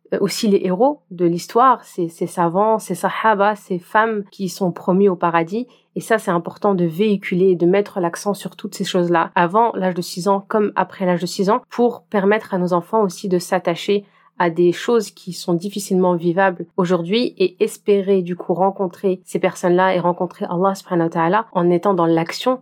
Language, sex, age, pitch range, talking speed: French, female, 30-49, 180-205 Hz, 195 wpm